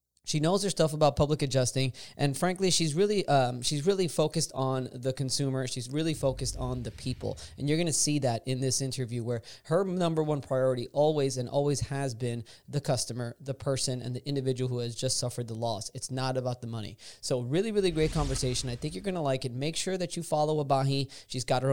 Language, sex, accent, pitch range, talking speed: English, male, American, 130-165 Hz, 225 wpm